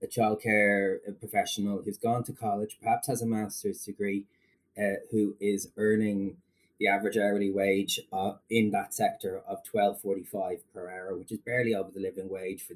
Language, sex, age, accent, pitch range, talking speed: English, male, 20-39, Irish, 95-105 Hz, 170 wpm